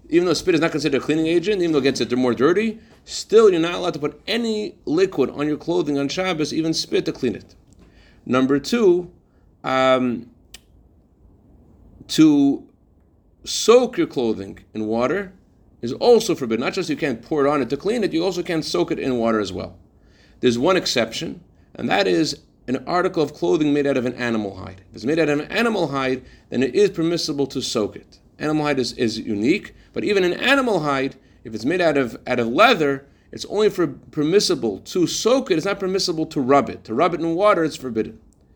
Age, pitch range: 40-59, 125-180 Hz